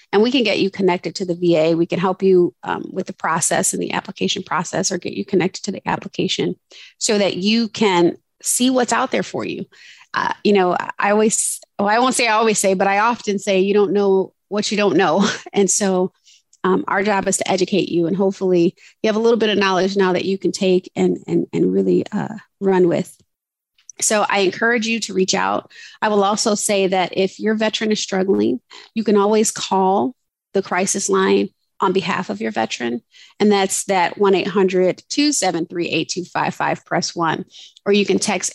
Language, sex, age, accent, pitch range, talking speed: English, female, 30-49, American, 180-210 Hz, 205 wpm